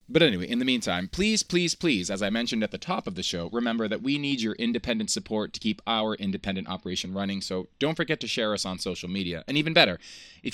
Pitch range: 100-135 Hz